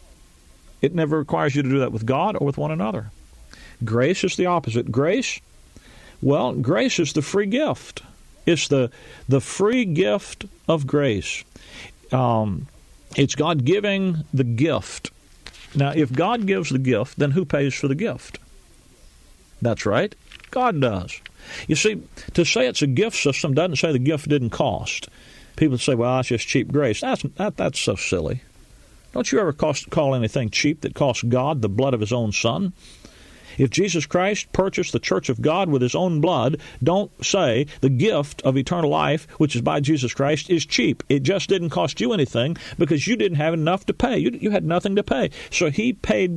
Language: English